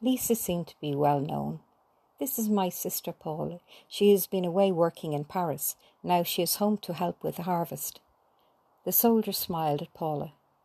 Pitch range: 155-185 Hz